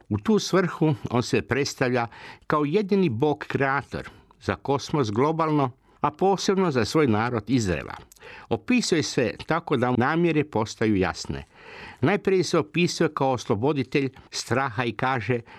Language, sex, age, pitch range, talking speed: Croatian, male, 60-79, 110-150 Hz, 130 wpm